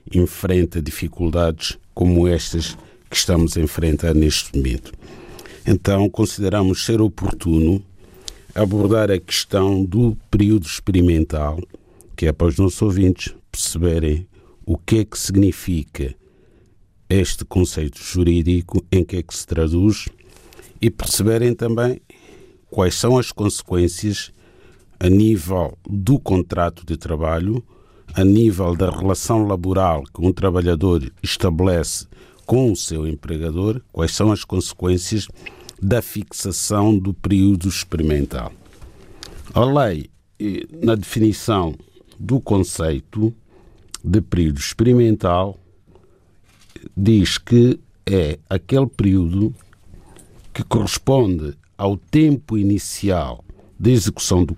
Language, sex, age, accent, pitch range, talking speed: Portuguese, male, 50-69, Brazilian, 85-105 Hz, 110 wpm